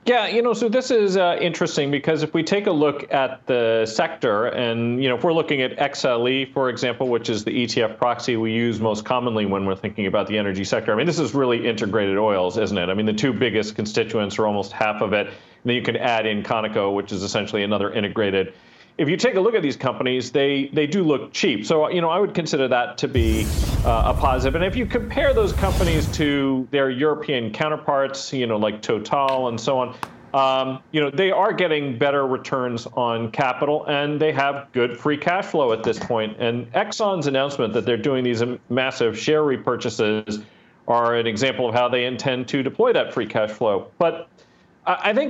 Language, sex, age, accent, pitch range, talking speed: English, male, 40-59, American, 115-145 Hz, 215 wpm